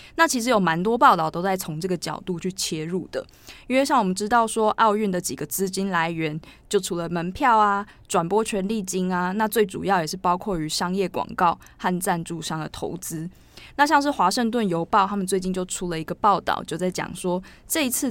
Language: Chinese